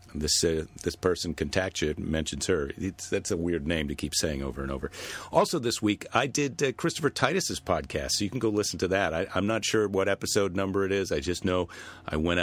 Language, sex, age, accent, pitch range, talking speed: English, male, 50-69, American, 85-105 Hz, 240 wpm